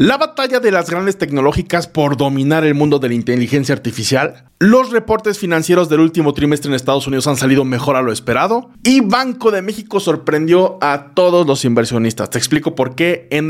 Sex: male